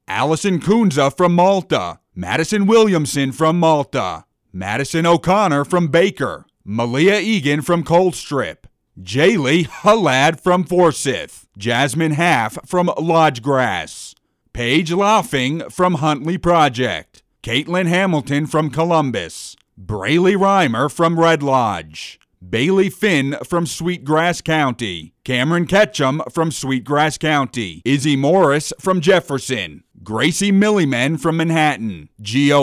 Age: 30-49